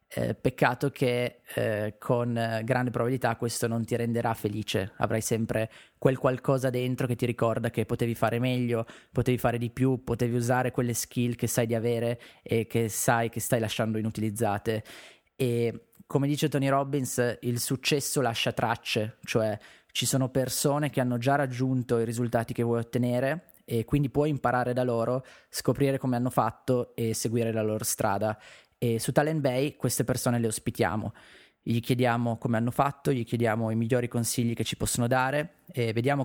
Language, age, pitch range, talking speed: Italian, 20-39, 115-125 Hz, 170 wpm